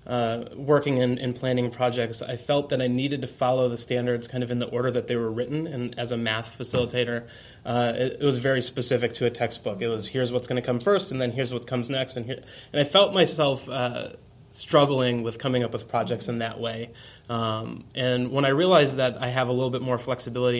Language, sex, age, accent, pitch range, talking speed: English, male, 20-39, American, 120-130 Hz, 230 wpm